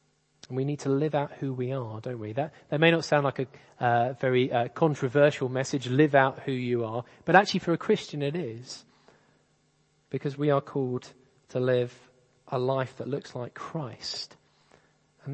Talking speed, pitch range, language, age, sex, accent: 190 wpm, 120-140 Hz, English, 40-59, male, British